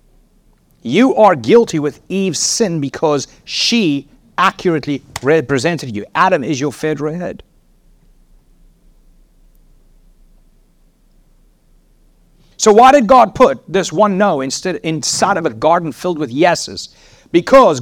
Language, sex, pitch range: English, male, 130-180 Hz